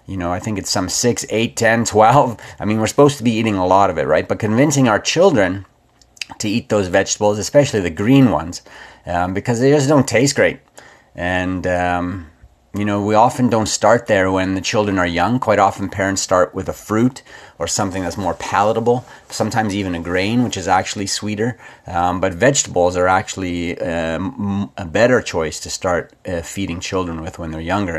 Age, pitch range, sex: 30-49, 90-115 Hz, male